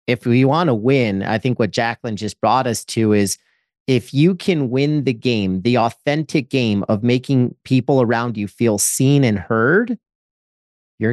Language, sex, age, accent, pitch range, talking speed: English, male, 40-59, American, 115-150 Hz, 180 wpm